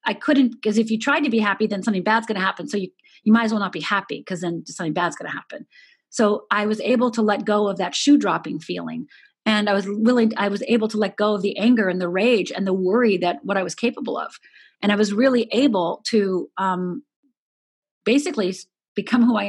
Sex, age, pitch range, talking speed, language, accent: female, 40-59, 200-250 Hz, 235 wpm, English, American